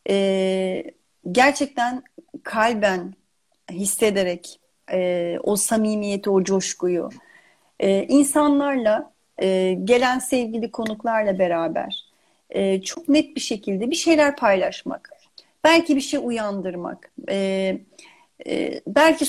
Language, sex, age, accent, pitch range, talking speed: Turkish, female, 40-59, native, 210-290 Hz, 75 wpm